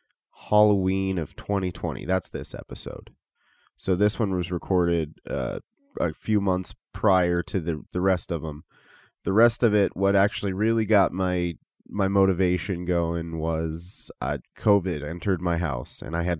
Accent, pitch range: American, 85-105 Hz